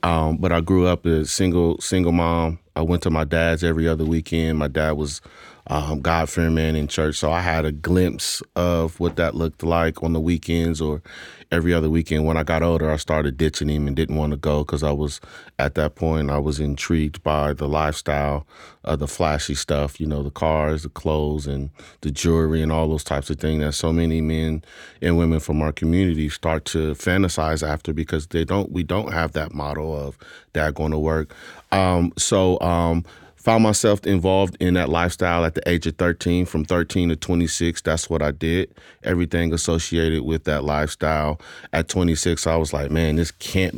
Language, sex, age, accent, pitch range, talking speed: English, male, 30-49, American, 75-85 Hz, 205 wpm